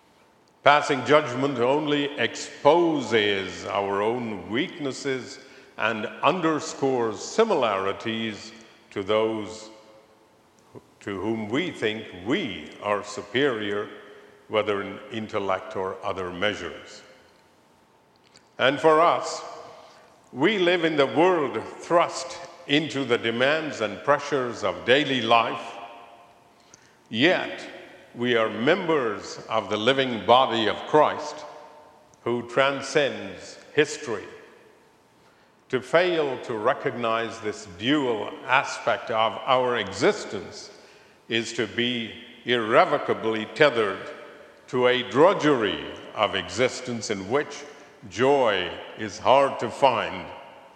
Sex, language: male, English